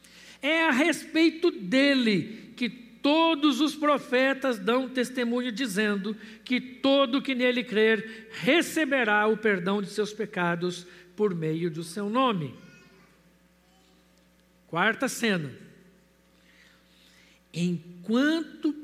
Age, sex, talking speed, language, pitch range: 60-79, male, 95 wpm, Portuguese, 215-300 Hz